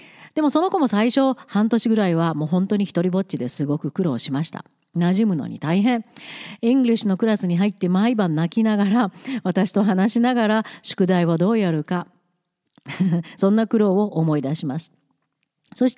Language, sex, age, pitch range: Japanese, female, 40-59, 170-260 Hz